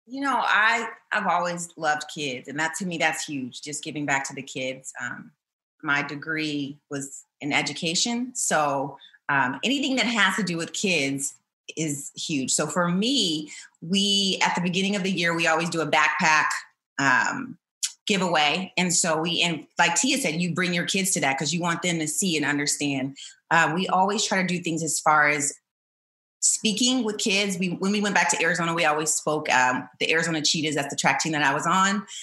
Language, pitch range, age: English, 155-195 Hz, 30-49